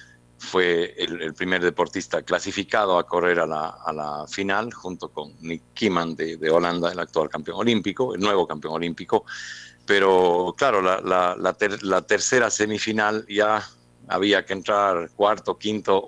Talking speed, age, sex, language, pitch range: 160 wpm, 60-79, male, Spanish, 85-120 Hz